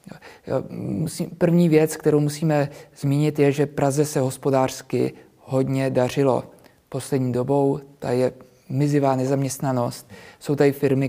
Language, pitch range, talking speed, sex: Czech, 125-145 Hz, 115 wpm, male